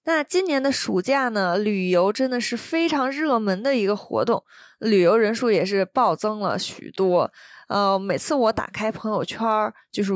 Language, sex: Chinese, female